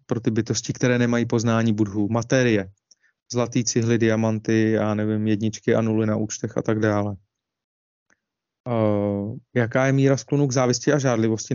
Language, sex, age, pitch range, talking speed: Czech, male, 30-49, 120-135 Hz, 155 wpm